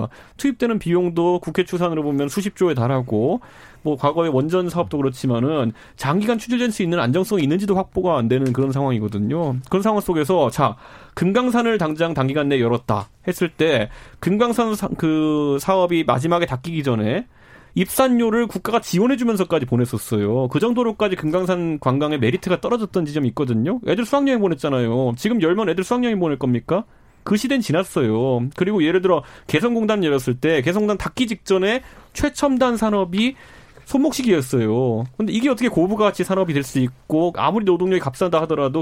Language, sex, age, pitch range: Korean, male, 30-49, 135-210 Hz